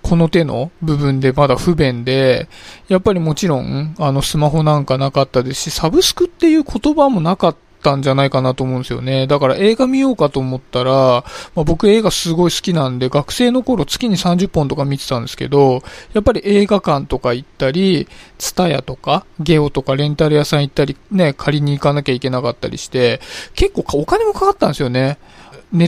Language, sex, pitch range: Japanese, male, 135-205 Hz